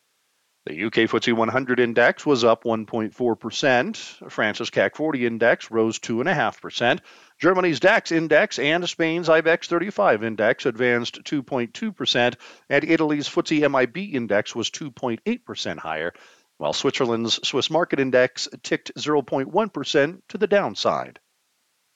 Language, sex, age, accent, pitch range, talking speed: English, male, 50-69, American, 110-145 Hz, 115 wpm